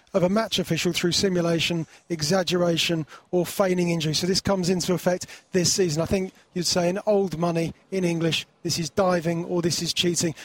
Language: English